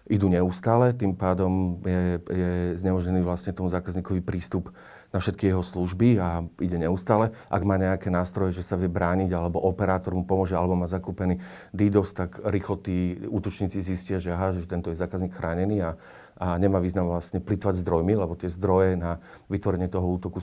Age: 40-59